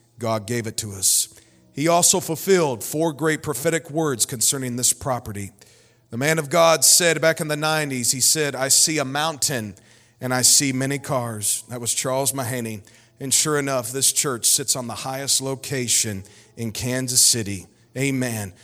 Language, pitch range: English, 115-140 Hz